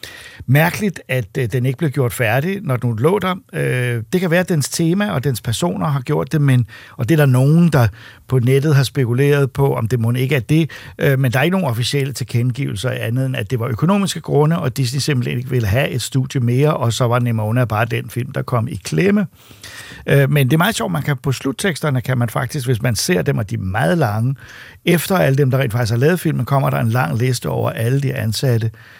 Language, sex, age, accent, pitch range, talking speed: Danish, male, 60-79, native, 120-145 Hz, 240 wpm